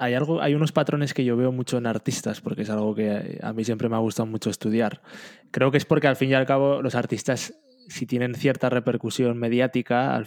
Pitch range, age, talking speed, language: 115-140 Hz, 20-39, 235 wpm, Spanish